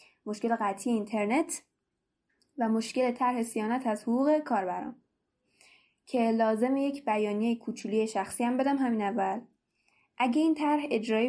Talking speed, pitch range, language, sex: 130 wpm, 210-250 Hz, Persian, female